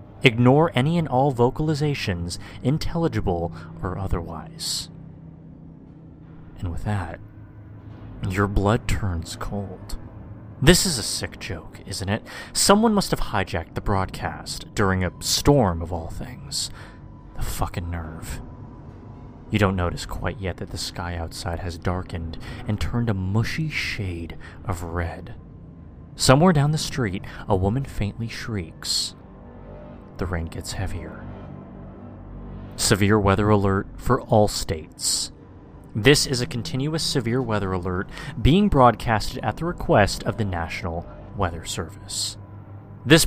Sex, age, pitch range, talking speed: male, 30-49, 95-125 Hz, 125 wpm